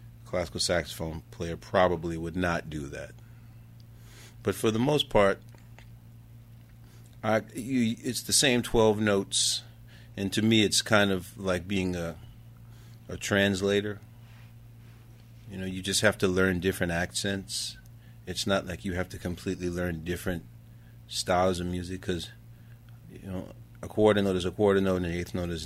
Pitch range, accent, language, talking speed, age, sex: 90-115 Hz, American, English, 155 wpm, 40-59, male